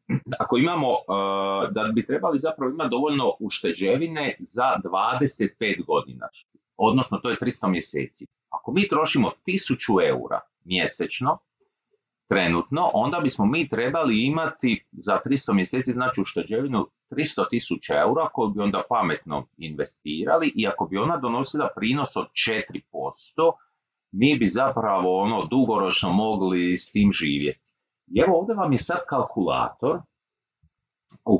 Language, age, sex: Croatian, 40-59, male